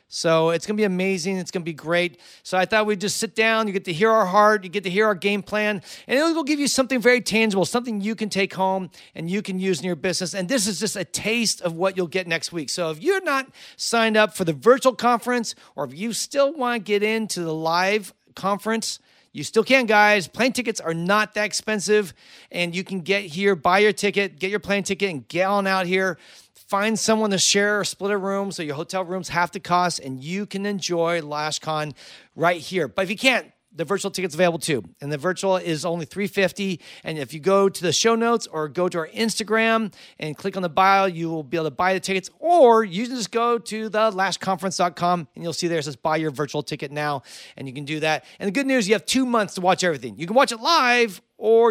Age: 40-59